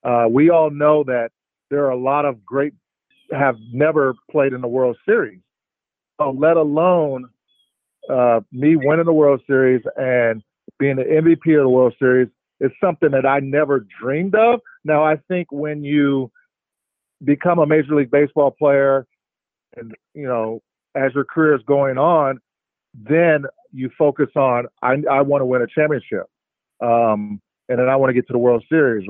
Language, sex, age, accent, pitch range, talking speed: English, male, 50-69, American, 125-150 Hz, 175 wpm